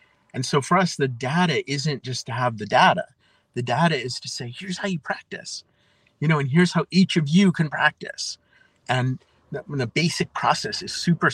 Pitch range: 125-165 Hz